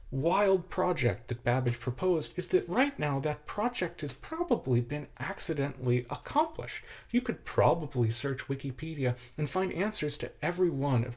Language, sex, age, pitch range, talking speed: English, male, 40-59, 110-150 Hz, 150 wpm